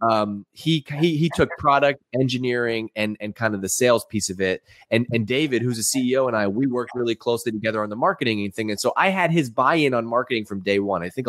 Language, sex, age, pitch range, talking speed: English, male, 20-39, 100-125 Hz, 245 wpm